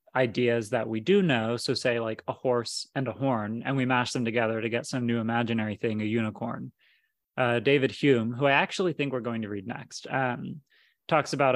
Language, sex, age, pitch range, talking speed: English, male, 30-49, 110-140 Hz, 215 wpm